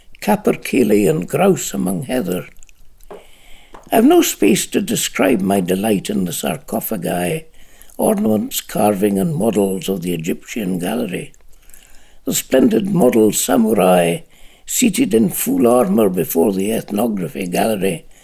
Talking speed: 120 wpm